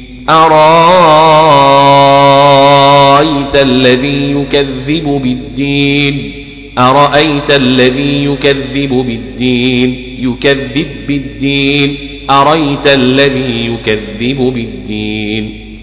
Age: 40-59